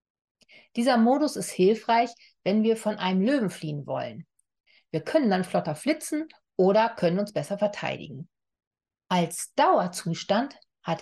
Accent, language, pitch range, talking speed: German, German, 175-245 Hz, 130 wpm